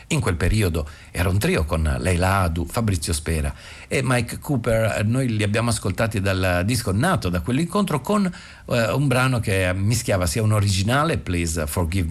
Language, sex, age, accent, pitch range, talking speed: Italian, male, 50-69, native, 90-115 Hz, 165 wpm